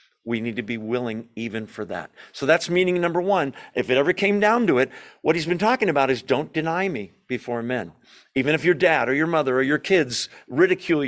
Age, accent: 50-69, American